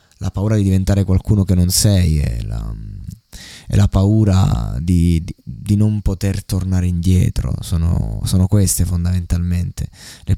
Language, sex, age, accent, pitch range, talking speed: Italian, male, 20-39, native, 90-110 Hz, 140 wpm